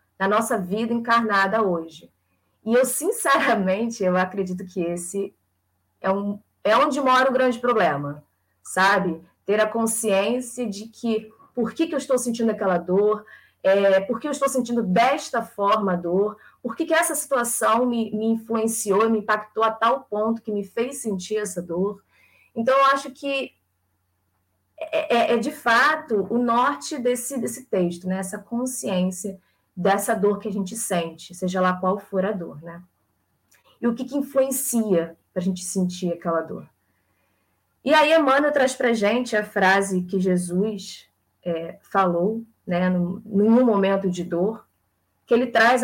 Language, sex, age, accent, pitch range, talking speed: Portuguese, female, 20-39, Brazilian, 185-245 Hz, 160 wpm